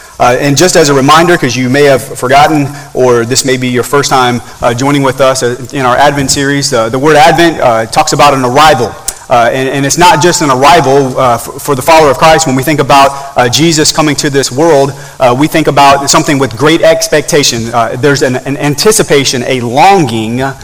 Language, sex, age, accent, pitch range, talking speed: English, male, 30-49, American, 125-160 Hz, 220 wpm